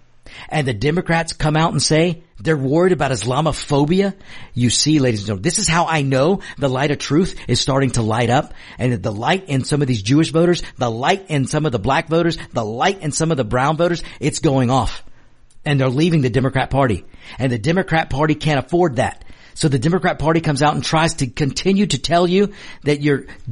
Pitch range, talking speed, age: 125-175 Hz, 220 wpm, 50-69